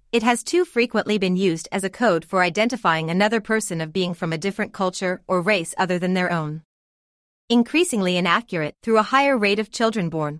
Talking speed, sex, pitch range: 195 wpm, female, 170-225 Hz